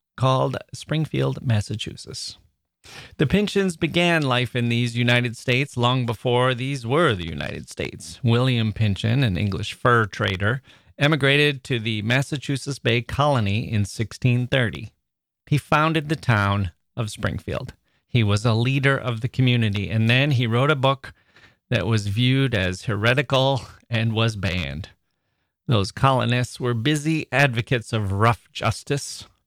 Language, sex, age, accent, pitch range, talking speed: English, male, 30-49, American, 105-135 Hz, 135 wpm